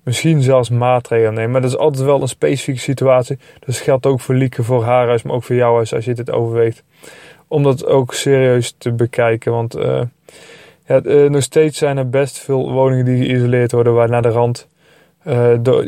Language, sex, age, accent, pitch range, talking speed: Dutch, male, 20-39, Dutch, 120-140 Hz, 210 wpm